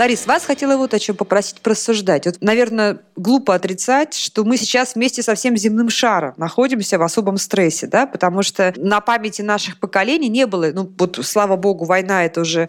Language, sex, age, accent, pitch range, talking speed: Russian, female, 20-39, native, 185-235 Hz, 190 wpm